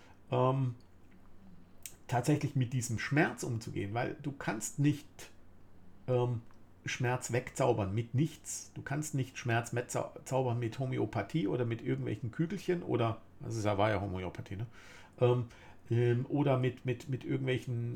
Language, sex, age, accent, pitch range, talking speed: German, male, 50-69, German, 100-145 Hz, 140 wpm